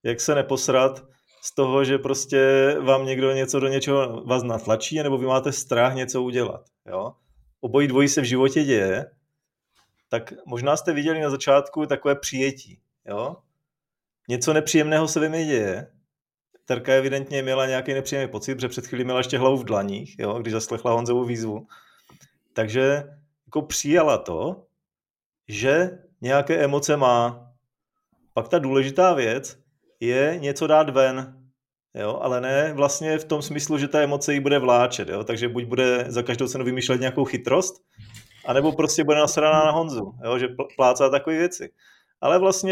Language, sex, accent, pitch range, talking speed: Czech, male, native, 125-150 Hz, 155 wpm